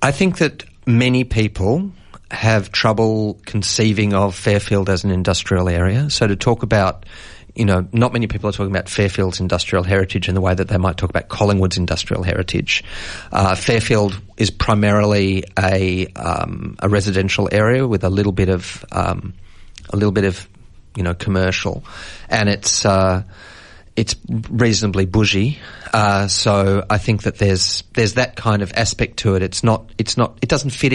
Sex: male